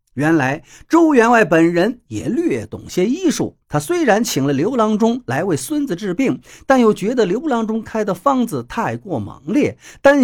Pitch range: 170-260 Hz